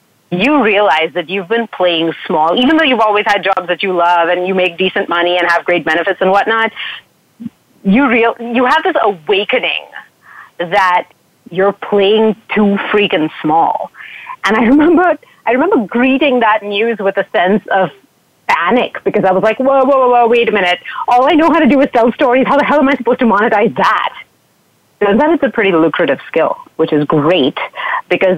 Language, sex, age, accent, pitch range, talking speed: English, female, 30-49, American, 175-230 Hz, 195 wpm